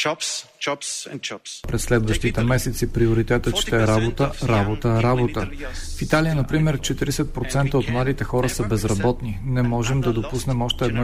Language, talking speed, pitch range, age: Bulgarian, 130 wpm, 120-165 Hz, 40-59